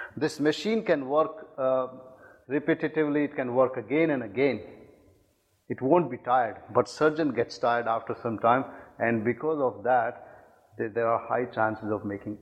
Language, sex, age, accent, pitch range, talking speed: English, male, 50-69, Indian, 115-155 Hz, 165 wpm